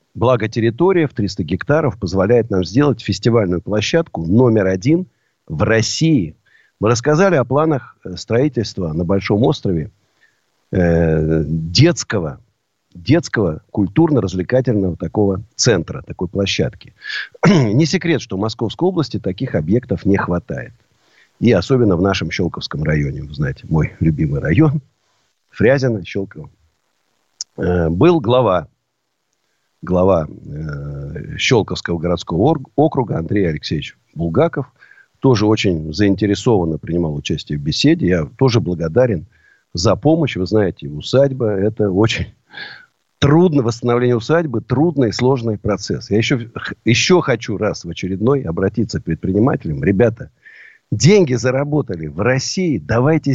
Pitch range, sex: 95-145 Hz, male